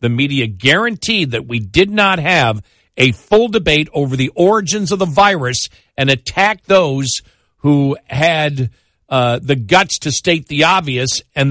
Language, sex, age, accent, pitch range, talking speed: English, male, 50-69, American, 125-180 Hz, 155 wpm